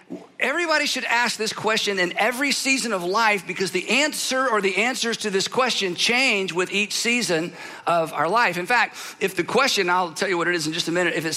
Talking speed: 225 wpm